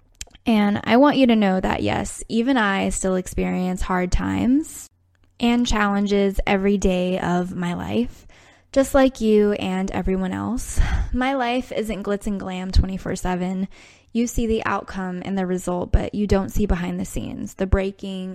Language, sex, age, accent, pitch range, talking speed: English, female, 10-29, American, 180-210 Hz, 165 wpm